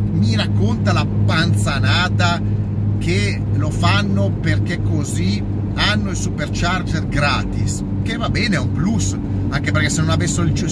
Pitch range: 95-105 Hz